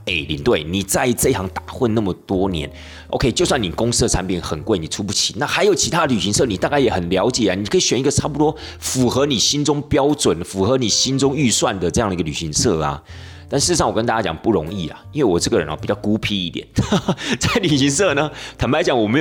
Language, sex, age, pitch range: Chinese, male, 30-49, 90-130 Hz